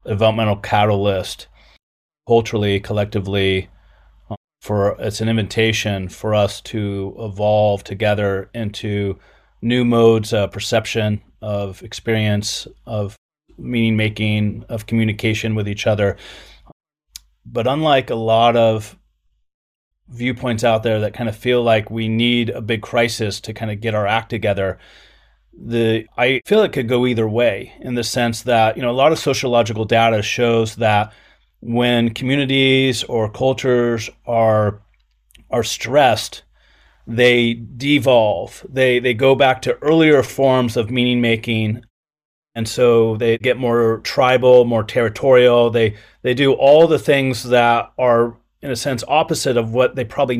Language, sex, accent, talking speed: English, male, American, 140 wpm